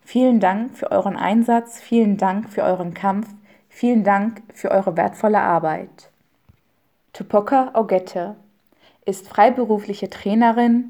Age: 20-39